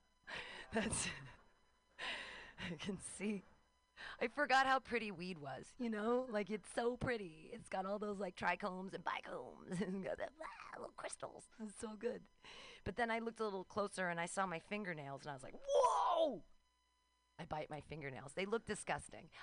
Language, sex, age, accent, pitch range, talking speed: English, female, 30-49, American, 170-260 Hz, 170 wpm